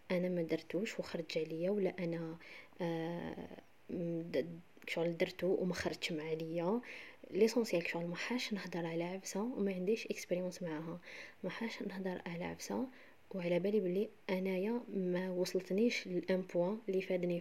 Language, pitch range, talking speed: Arabic, 175-210 Hz, 135 wpm